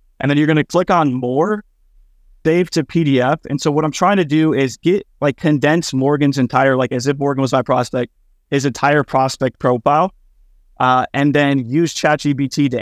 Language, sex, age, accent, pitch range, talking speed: English, male, 20-39, American, 125-150 Hz, 190 wpm